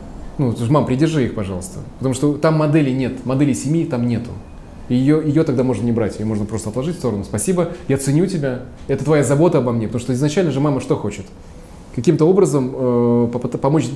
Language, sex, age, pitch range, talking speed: Russian, male, 20-39, 125-165 Hz, 200 wpm